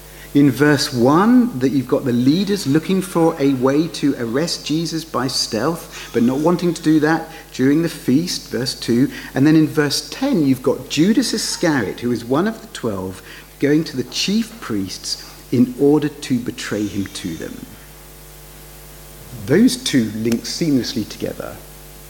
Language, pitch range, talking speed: English, 110-160 Hz, 165 wpm